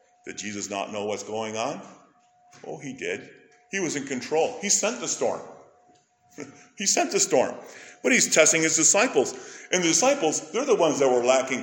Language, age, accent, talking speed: English, 50-69, American, 185 wpm